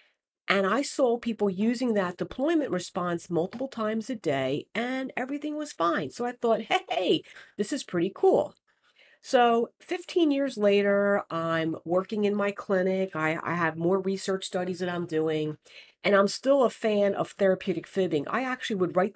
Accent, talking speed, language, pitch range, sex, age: American, 170 wpm, English, 165-235 Hz, female, 50-69